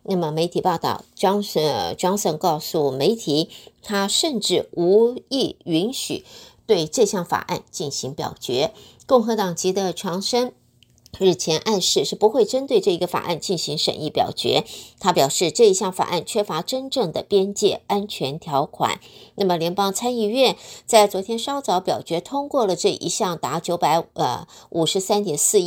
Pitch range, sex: 170-235 Hz, female